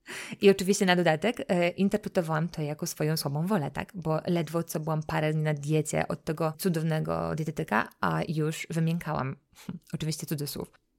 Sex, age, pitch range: female, 20-39, 160-195 Hz